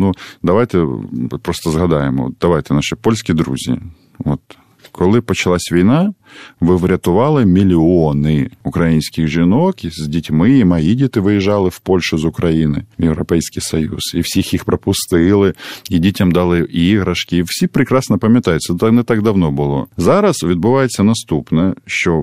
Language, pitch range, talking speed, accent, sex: Russian, 80-105 Hz, 140 wpm, native, male